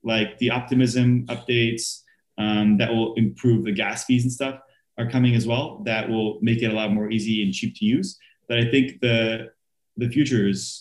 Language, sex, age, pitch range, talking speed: English, male, 20-39, 110-130 Hz, 200 wpm